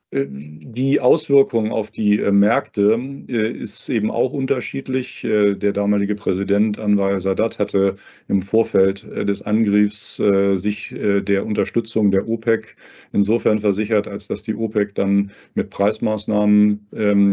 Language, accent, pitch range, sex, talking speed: German, German, 100-110 Hz, male, 115 wpm